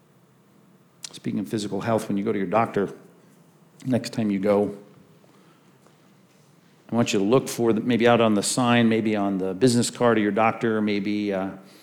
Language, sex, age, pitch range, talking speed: English, male, 50-69, 115-150 Hz, 185 wpm